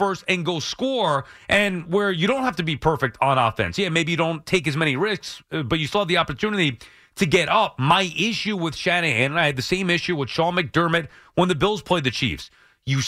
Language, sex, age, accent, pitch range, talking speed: English, male, 30-49, American, 165-230 Hz, 235 wpm